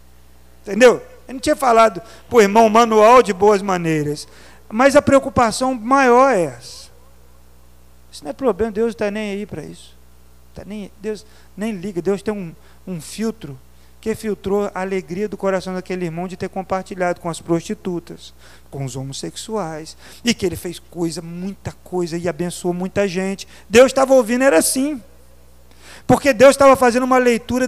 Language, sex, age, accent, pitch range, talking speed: Portuguese, male, 40-59, Brazilian, 180-285 Hz, 170 wpm